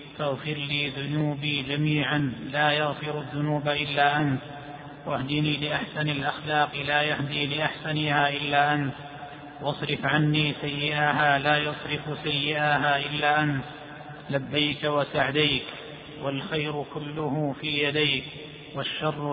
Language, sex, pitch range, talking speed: Arabic, male, 145-150 Hz, 100 wpm